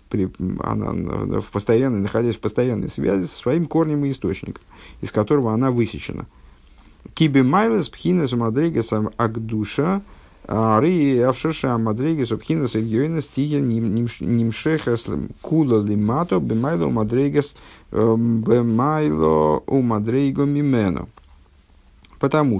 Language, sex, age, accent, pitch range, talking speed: Russian, male, 50-69, native, 110-145 Hz, 35 wpm